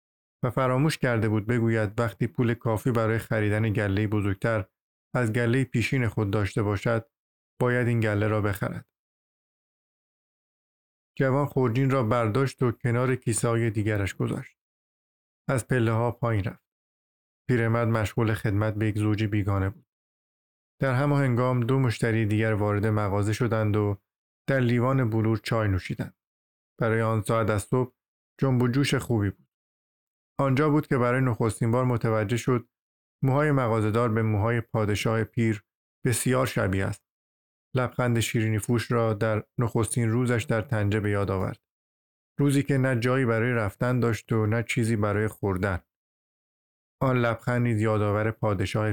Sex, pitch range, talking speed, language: male, 105-125 Hz, 140 wpm, Persian